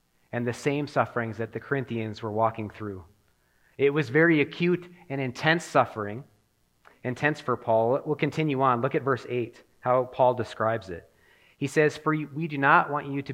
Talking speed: 180 wpm